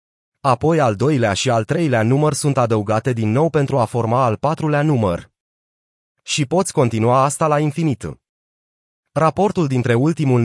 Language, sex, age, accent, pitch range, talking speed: Romanian, male, 30-49, native, 120-155 Hz, 150 wpm